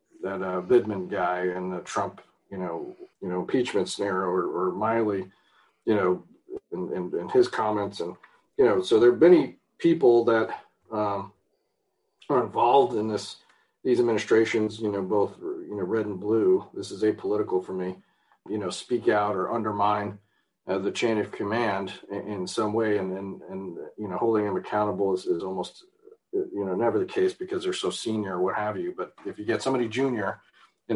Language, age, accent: English, 40-59, American